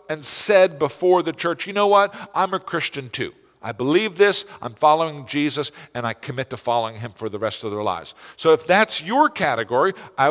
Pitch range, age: 115-155 Hz, 50-69